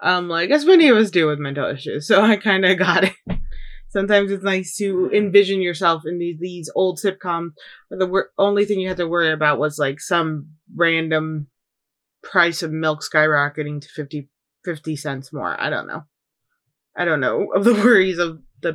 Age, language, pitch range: 20-39, English, 155-205 Hz